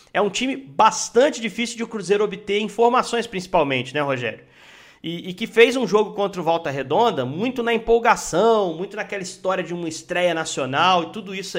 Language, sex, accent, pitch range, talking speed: Portuguese, male, Brazilian, 160-220 Hz, 185 wpm